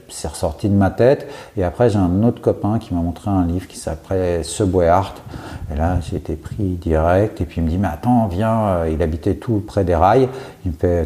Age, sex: 50-69, male